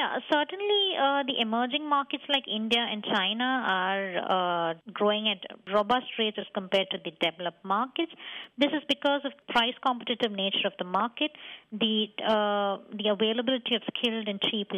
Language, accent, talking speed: English, Indian, 160 wpm